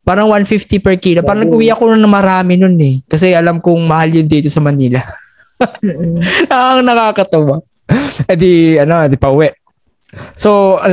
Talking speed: 160 wpm